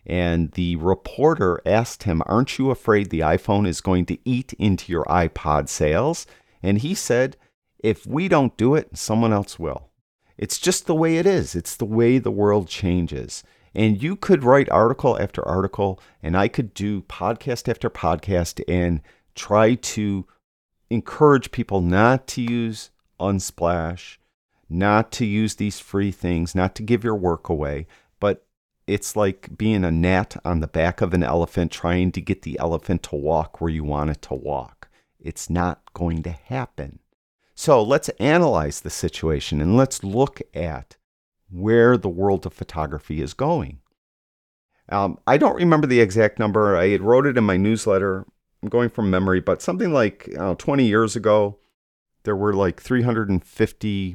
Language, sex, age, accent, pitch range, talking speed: English, male, 50-69, American, 85-110 Hz, 165 wpm